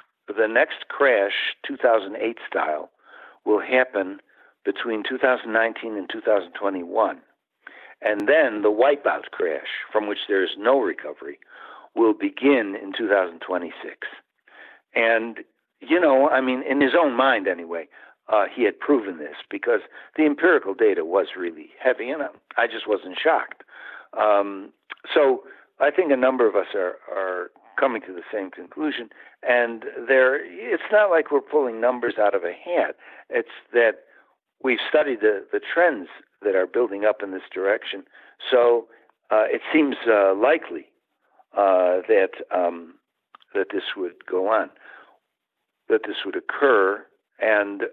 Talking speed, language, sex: 140 wpm, English, male